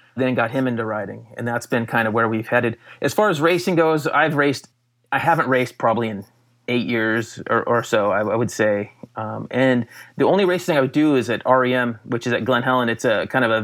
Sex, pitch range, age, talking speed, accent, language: male, 115-130 Hz, 30-49, 240 wpm, American, English